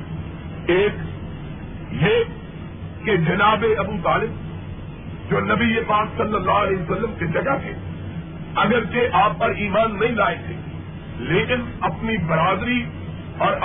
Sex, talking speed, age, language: male, 125 wpm, 50-69, Urdu